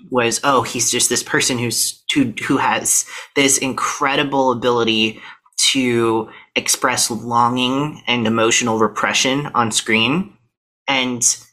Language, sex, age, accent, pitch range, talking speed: English, male, 30-49, American, 115-140 Hz, 105 wpm